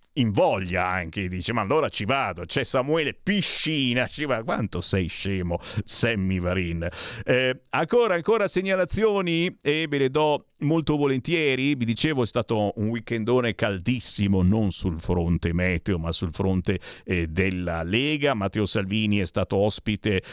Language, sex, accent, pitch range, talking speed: Italian, male, native, 100-150 Hz, 150 wpm